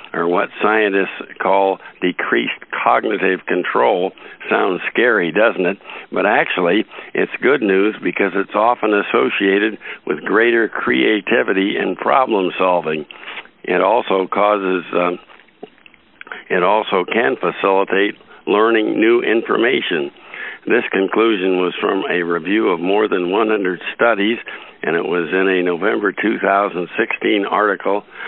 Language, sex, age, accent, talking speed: English, male, 60-79, American, 125 wpm